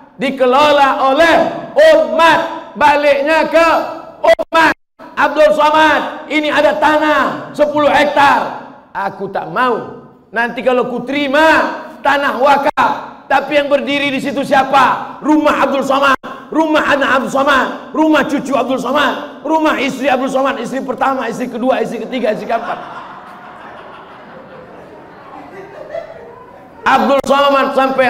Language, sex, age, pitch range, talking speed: Indonesian, male, 50-69, 255-295 Hz, 115 wpm